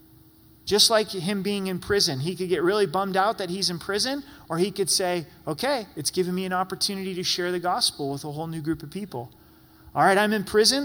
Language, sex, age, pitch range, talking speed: English, male, 30-49, 150-200 Hz, 230 wpm